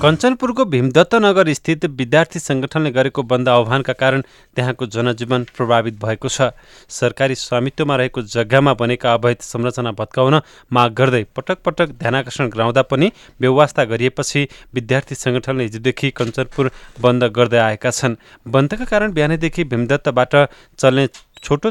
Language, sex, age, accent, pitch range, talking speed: English, male, 30-49, Indian, 120-140 Hz, 135 wpm